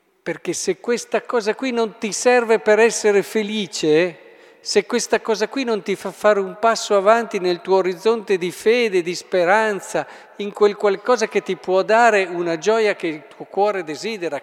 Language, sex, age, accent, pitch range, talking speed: Italian, male, 50-69, native, 180-230 Hz, 180 wpm